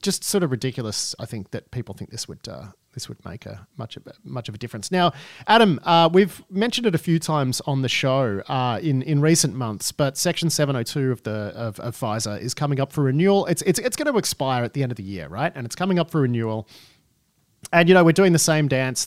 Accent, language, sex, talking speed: Australian, English, male, 260 wpm